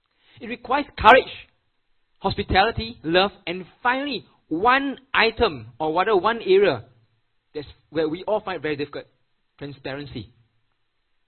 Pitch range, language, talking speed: 130-205 Hz, English, 110 wpm